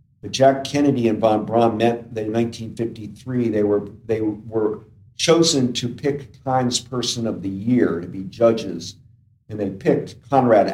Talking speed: 150 wpm